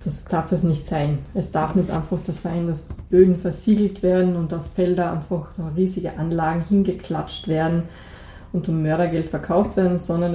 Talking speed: 175 wpm